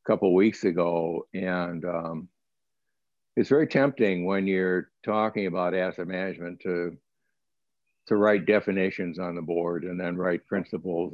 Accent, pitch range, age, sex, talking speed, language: American, 90-100 Hz, 60-79, male, 145 wpm, English